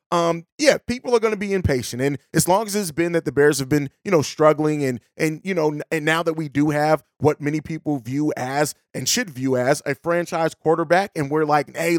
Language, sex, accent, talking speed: English, male, American, 240 wpm